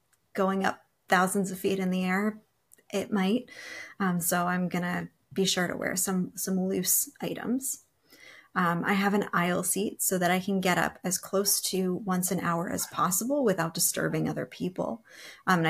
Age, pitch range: 30-49, 175-210 Hz